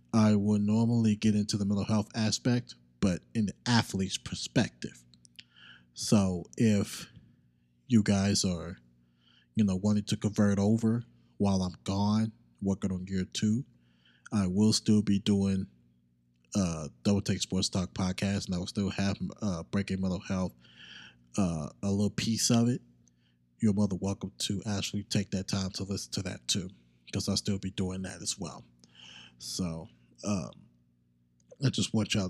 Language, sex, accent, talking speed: English, male, American, 160 wpm